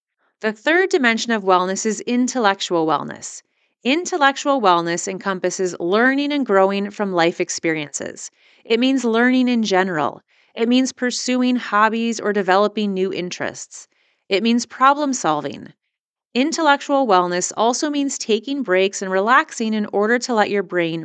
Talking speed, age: 135 wpm, 30-49